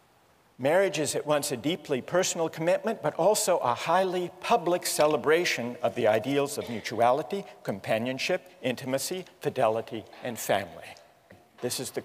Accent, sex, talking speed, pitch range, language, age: American, male, 135 wpm, 130-175 Hz, English, 50-69